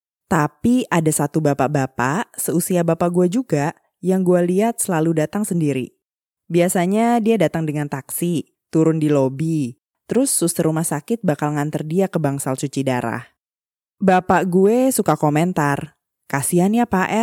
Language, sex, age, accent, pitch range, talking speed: Indonesian, female, 20-39, native, 140-175 Hz, 140 wpm